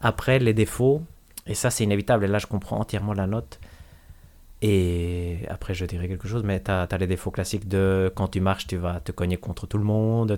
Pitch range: 95-110 Hz